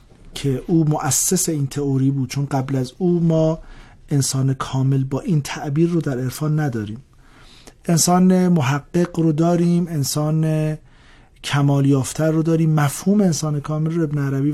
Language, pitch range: Persian, 135-165 Hz